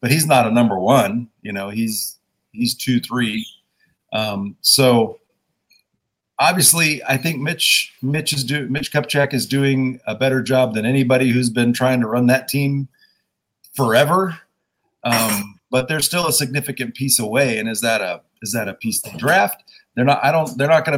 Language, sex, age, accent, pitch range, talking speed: English, male, 40-59, American, 120-155 Hz, 180 wpm